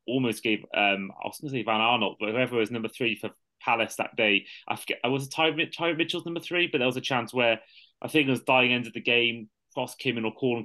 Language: English